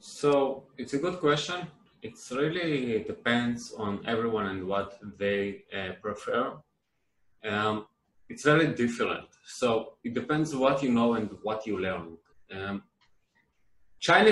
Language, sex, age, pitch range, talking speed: Turkish, male, 20-39, 105-150 Hz, 130 wpm